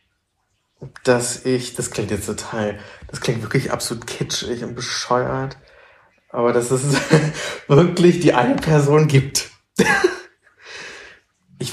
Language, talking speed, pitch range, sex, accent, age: German, 115 wpm, 110-130 Hz, male, German, 20-39